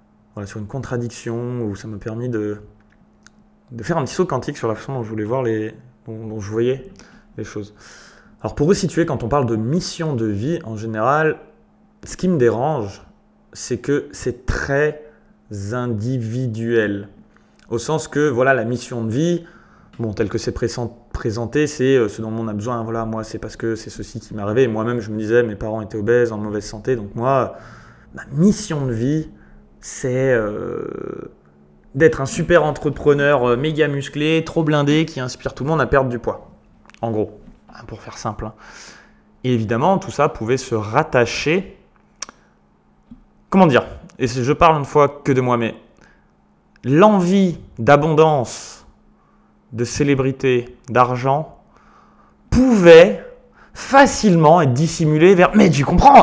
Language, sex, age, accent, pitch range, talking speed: French, male, 20-39, French, 110-155 Hz, 160 wpm